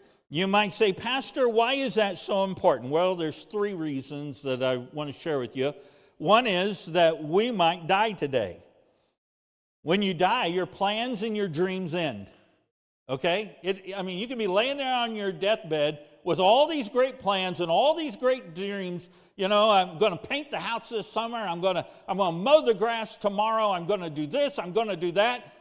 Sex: male